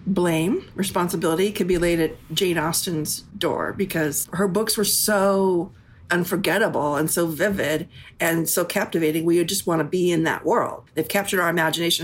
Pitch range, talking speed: 165-210 Hz, 170 wpm